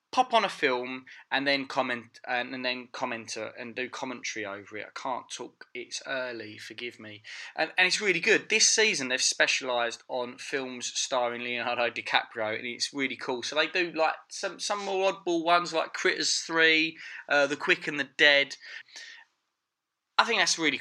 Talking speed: 185 wpm